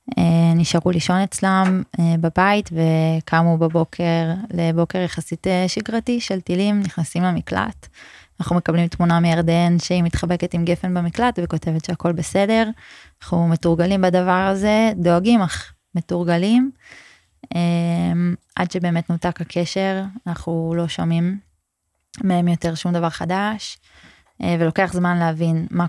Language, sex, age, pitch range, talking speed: Hebrew, female, 20-39, 165-180 Hz, 110 wpm